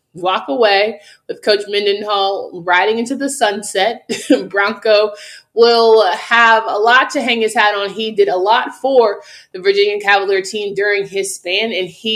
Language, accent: English, American